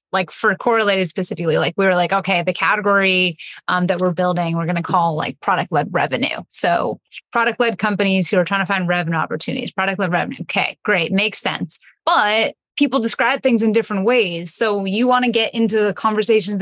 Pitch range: 180-210 Hz